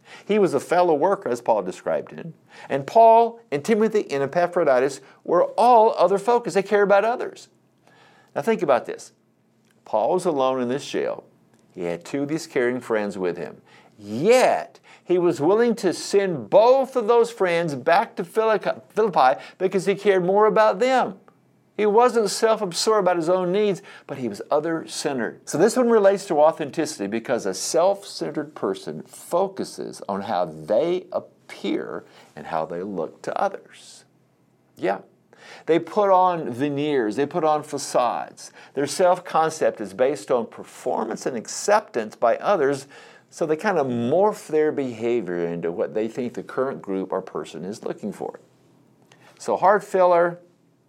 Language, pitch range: English, 140-210 Hz